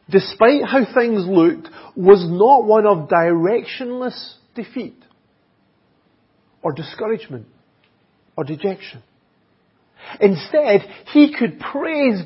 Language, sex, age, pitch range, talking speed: English, male, 40-59, 155-215 Hz, 90 wpm